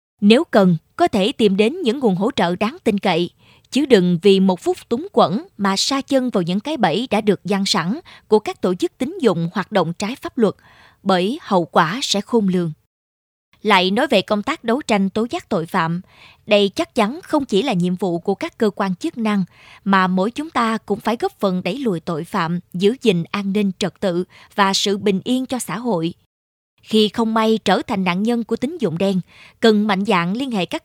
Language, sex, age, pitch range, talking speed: Vietnamese, female, 20-39, 190-230 Hz, 225 wpm